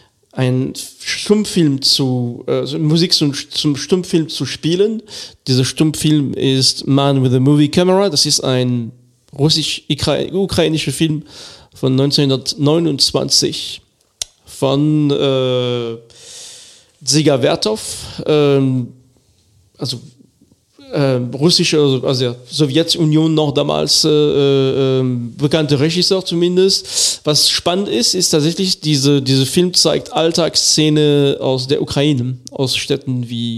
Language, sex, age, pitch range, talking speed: German, male, 40-59, 130-160 Hz, 105 wpm